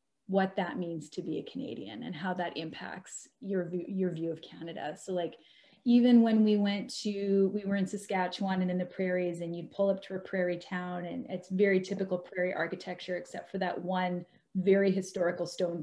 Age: 30-49